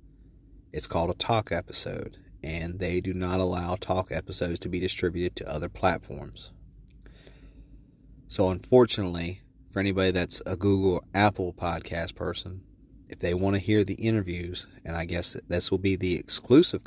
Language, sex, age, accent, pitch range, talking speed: English, male, 40-59, American, 90-110 Hz, 155 wpm